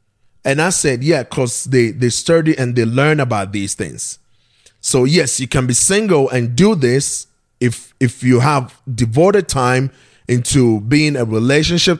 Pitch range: 120-160 Hz